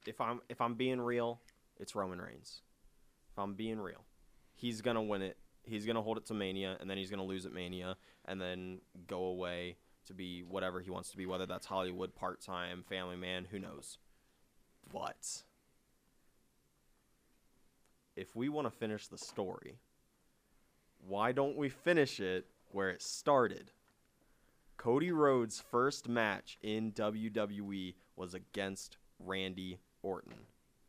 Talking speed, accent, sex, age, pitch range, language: 150 wpm, American, male, 20-39, 95-120 Hz, English